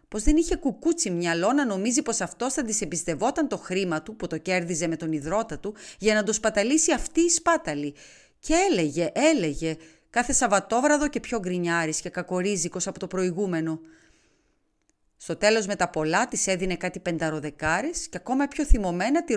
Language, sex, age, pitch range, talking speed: Greek, female, 30-49, 175-245 Hz, 170 wpm